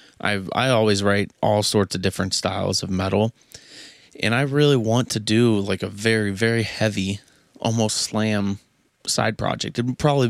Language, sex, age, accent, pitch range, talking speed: English, male, 20-39, American, 95-115 Hz, 170 wpm